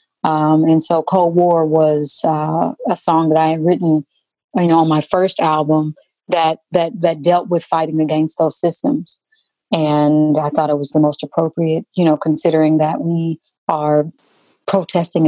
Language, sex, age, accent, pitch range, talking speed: English, female, 30-49, American, 155-170 Hz, 170 wpm